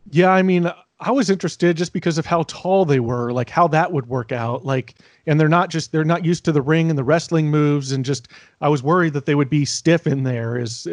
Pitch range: 140-170 Hz